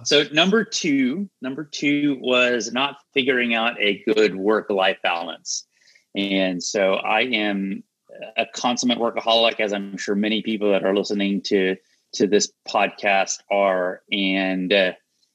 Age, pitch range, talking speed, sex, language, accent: 30-49, 95-120 Hz, 135 wpm, male, English, American